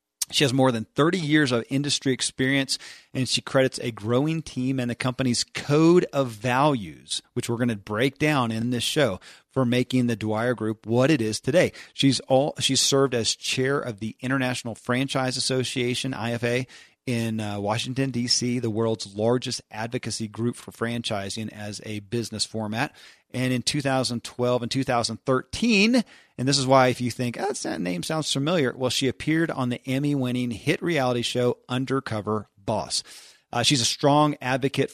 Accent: American